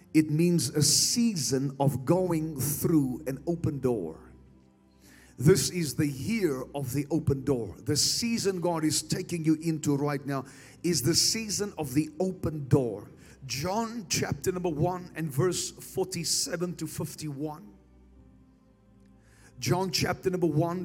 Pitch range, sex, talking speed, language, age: 135-175 Hz, male, 135 wpm, English, 40-59